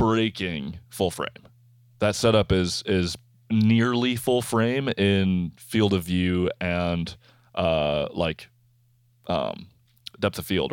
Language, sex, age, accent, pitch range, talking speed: English, male, 20-39, American, 90-120 Hz, 115 wpm